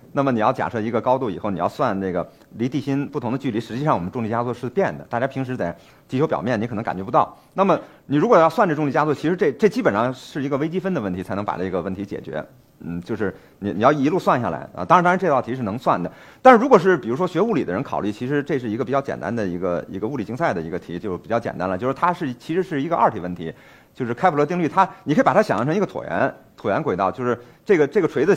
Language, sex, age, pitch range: Chinese, male, 50-69, 115-155 Hz